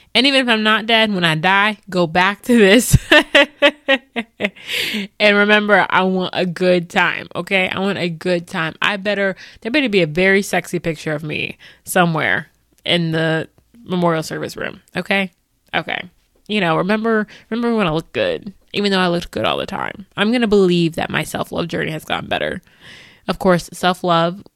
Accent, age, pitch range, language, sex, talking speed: American, 20-39, 170-210 Hz, English, female, 185 wpm